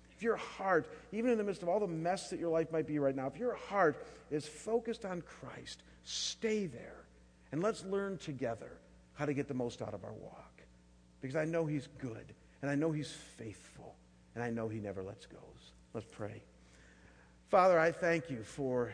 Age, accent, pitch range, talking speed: 50-69, American, 110-155 Hz, 205 wpm